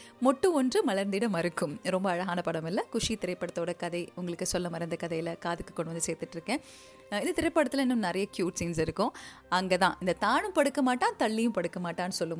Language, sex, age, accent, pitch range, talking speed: Tamil, female, 30-49, native, 180-255 Hz, 165 wpm